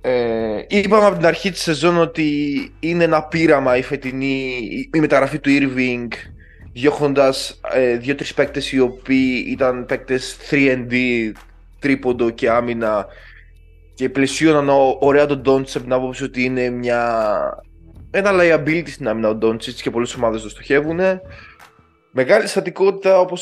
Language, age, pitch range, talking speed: Greek, 20-39, 120-150 Hz, 135 wpm